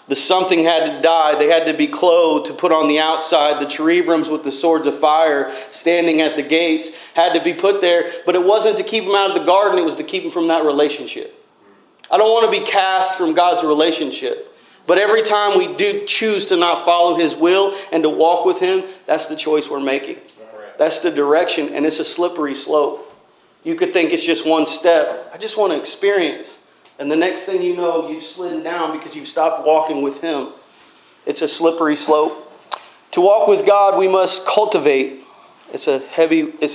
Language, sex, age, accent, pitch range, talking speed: English, male, 40-59, American, 155-190 Hz, 205 wpm